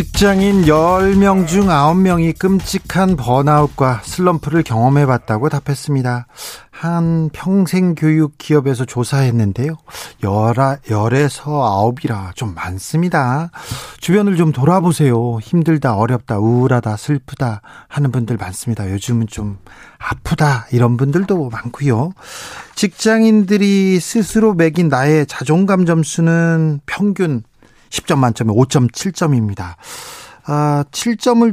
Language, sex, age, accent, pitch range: Korean, male, 40-59, native, 125-180 Hz